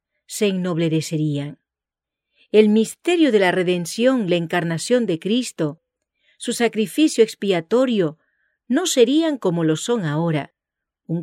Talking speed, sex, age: 110 wpm, female, 40-59